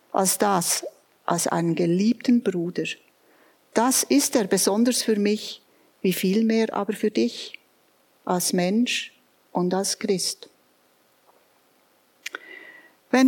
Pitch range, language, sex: 190-245 Hz, German, female